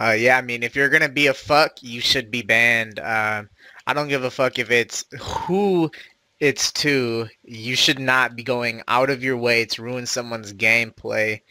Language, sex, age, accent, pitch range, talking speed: English, male, 20-39, American, 110-140 Hz, 200 wpm